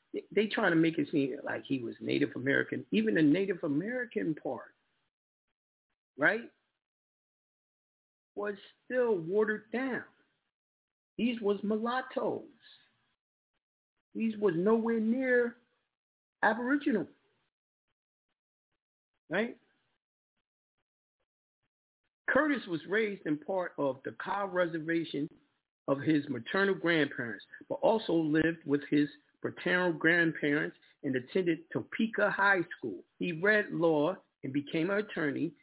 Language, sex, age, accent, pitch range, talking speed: English, male, 50-69, American, 150-225 Hz, 105 wpm